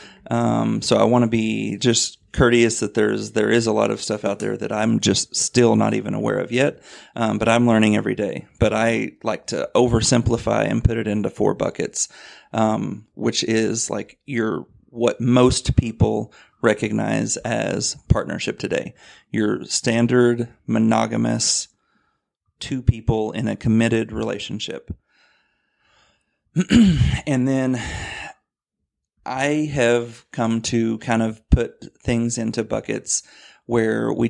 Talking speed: 140 wpm